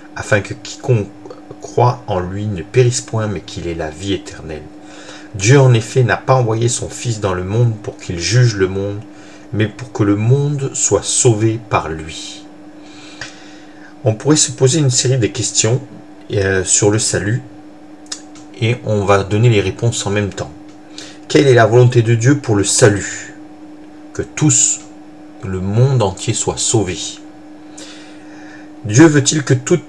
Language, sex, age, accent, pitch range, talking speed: French, male, 50-69, French, 105-150 Hz, 160 wpm